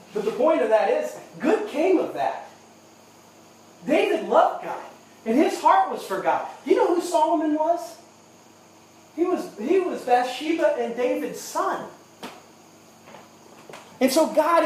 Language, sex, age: English, male, 30-49